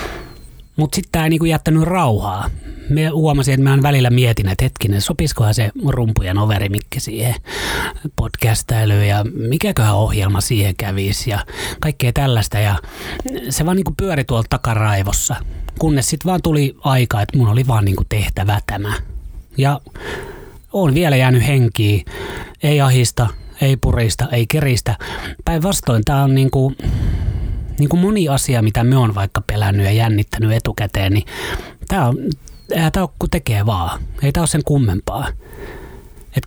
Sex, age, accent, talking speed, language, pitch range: male, 30-49, native, 150 wpm, Finnish, 105-140 Hz